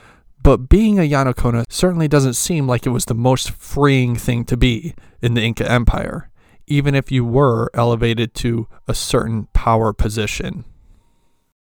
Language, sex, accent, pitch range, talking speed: English, male, American, 115-140 Hz, 155 wpm